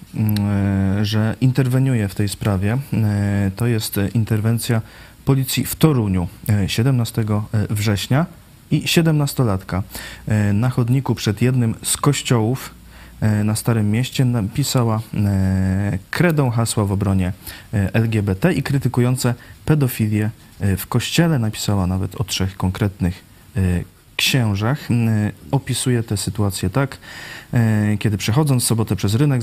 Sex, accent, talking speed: male, native, 100 wpm